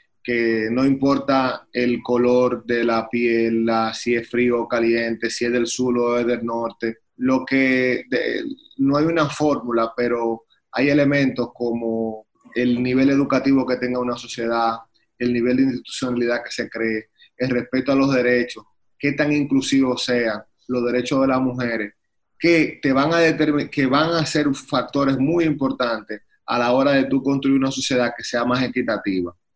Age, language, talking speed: 30-49, Spanish, 175 wpm